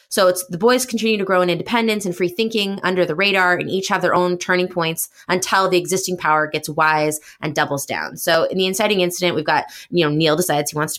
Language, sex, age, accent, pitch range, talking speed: English, female, 20-39, American, 155-190 Hz, 245 wpm